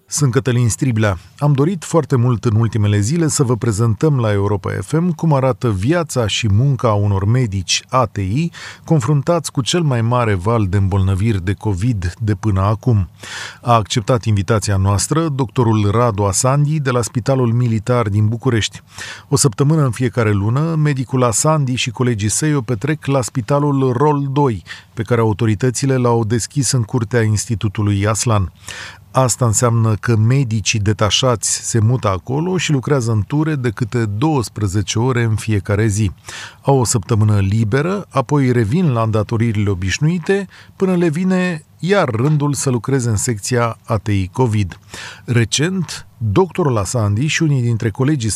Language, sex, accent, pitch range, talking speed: Romanian, male, native, 110-145 Hz, 150 wpm